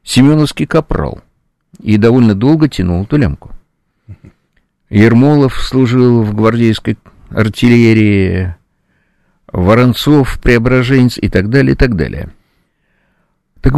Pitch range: 95-120 Hz